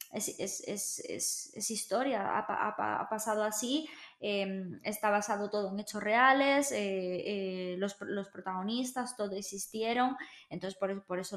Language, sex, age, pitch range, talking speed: Spanish, female, 20-39, 200-235 Hz, 155 wpm